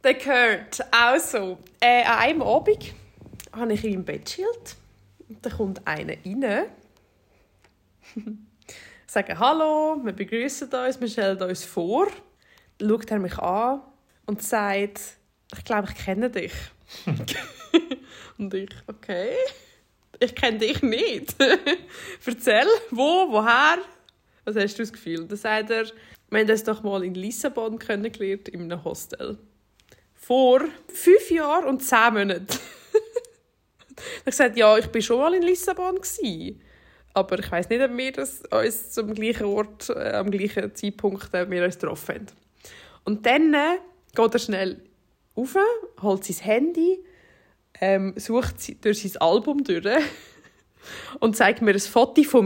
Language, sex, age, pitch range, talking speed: German, female, 20-39, 195-285 Hz, 145 wpm